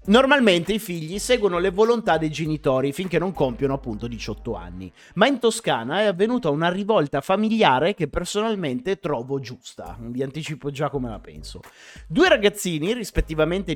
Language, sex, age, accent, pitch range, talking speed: Italian, male, 30-49, native, 145-210 Hz, 155 wpm